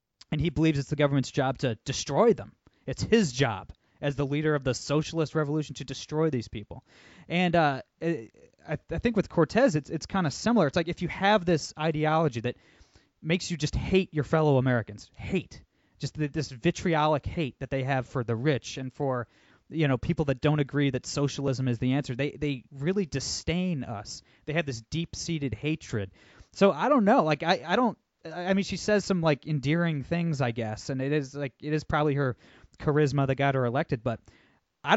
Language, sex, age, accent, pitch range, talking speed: English, male, 20-39, American, 130-165 Hz, 205 wpm